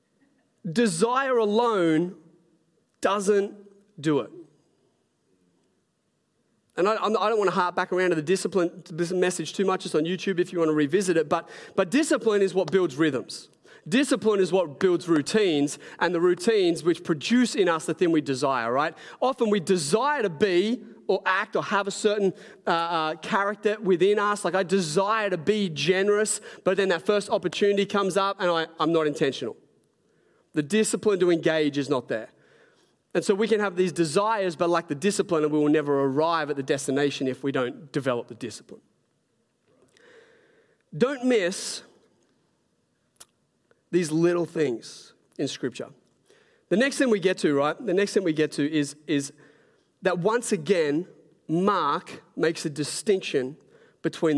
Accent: Australian